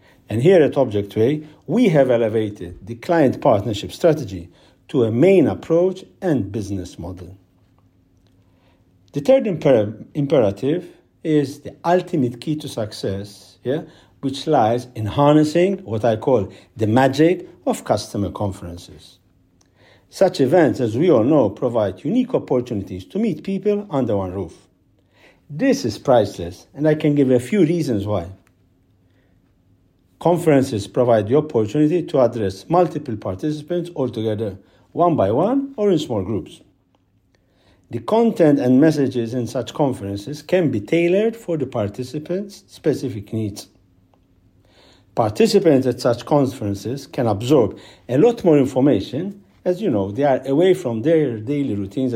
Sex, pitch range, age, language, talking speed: male, 100-160 Hz, 50-69, English, 135 wpm